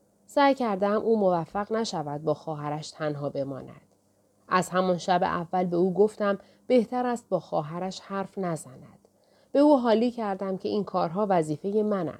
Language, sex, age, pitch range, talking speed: Persian, female, 30-49, 150-215 Hz, 150 wpm